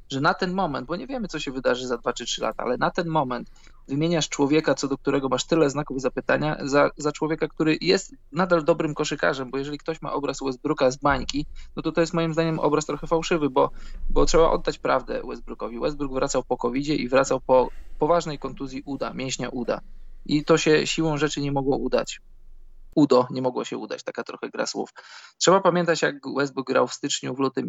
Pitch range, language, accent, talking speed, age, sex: 135-165 Hz, Polish, native, 210 wpm, 20-39, male